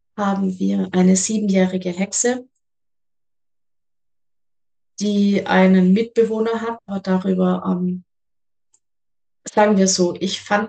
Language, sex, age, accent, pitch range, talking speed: German, female, 20-39, German, 185-205 Hz, 95 wpm